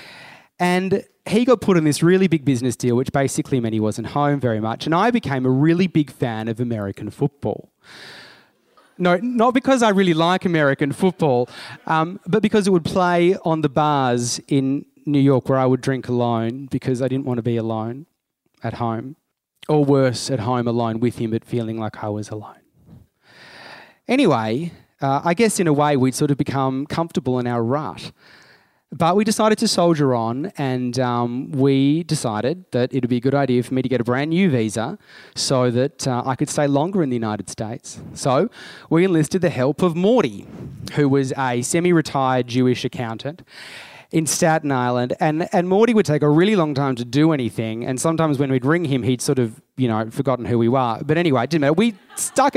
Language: English